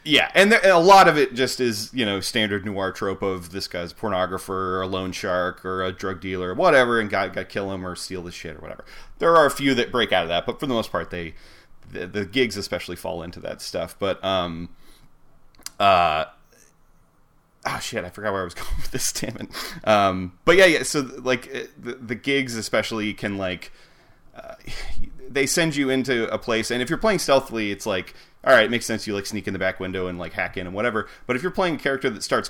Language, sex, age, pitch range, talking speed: English, male, 30-49, 95-120 Hz, 240 wpm